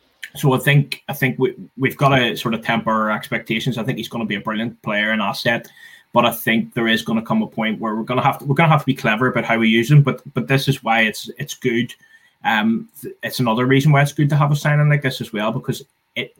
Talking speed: 275 wpm